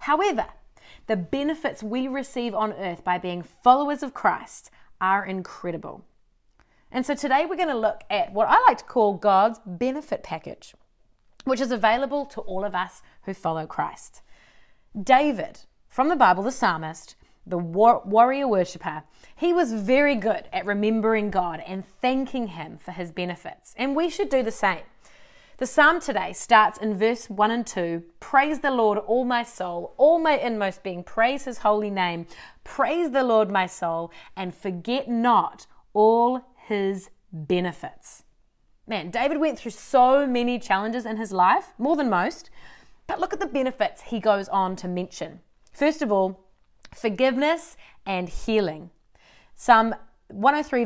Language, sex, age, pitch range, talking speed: English, female, 30-49, 190-260 Hz, 155 wpm